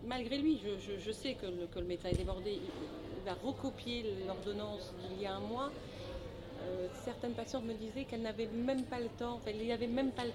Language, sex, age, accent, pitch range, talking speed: French, female, 40-59, French, 170-230 Hz, 225 wpm